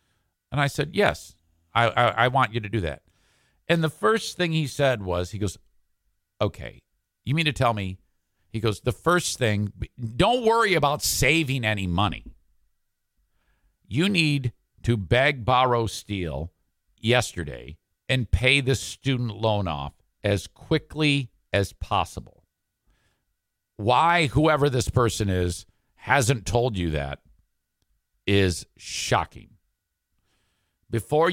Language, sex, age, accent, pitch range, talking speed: English, male, 50-69, American, 95-140 Hz, 130 wpm